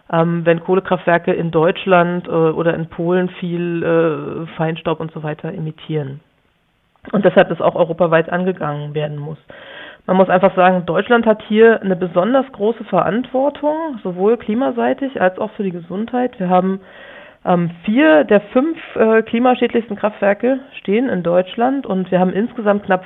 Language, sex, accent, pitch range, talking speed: German, female, German, 180-220 Hz, 155 wpm